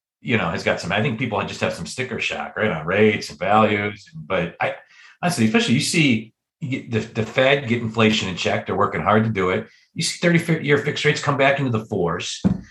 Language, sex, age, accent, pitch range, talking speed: English, male, 40-59, American, 110-145 Hz, 230 wpm